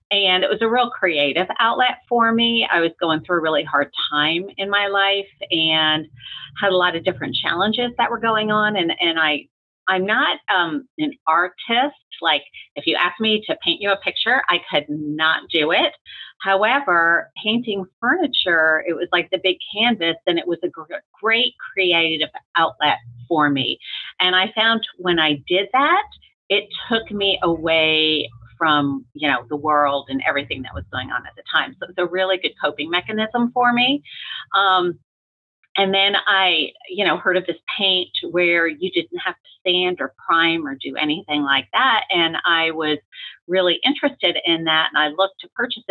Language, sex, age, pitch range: English, female, 40-59, 160-210 Hz